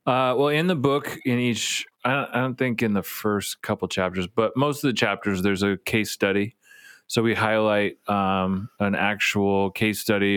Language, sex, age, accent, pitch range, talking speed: English, male, 30-49, American, 95-110 Hz, 185 wpm